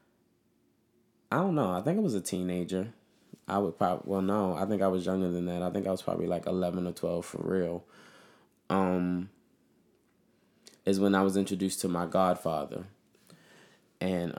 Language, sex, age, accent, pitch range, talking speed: English, male, 20-39, American, 90-100 Hz, 175 wpm